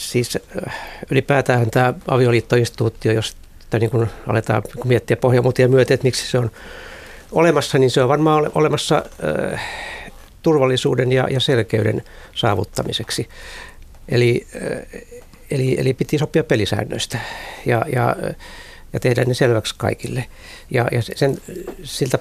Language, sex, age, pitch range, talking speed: Finnish, male, 60-79, 110-130 Hz, 110 wpm